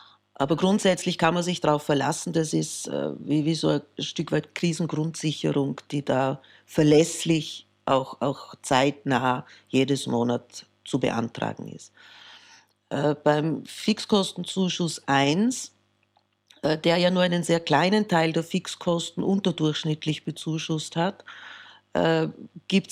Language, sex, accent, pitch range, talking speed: German, female, Austrian, 145-175 Hz, 125 wpm